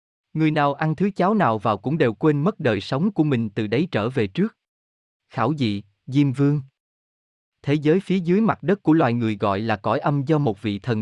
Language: Vietnamese